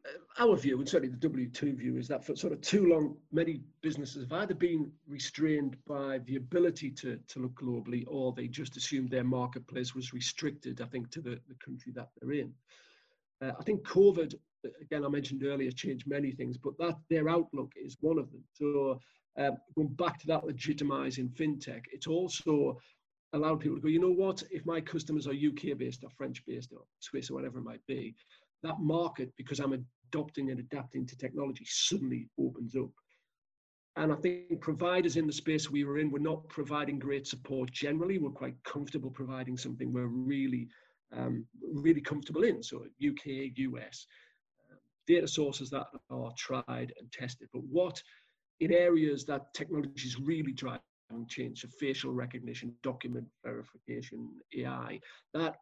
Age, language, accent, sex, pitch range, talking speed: 40-59, English, British, male, 130-155 Hz, 175 wpm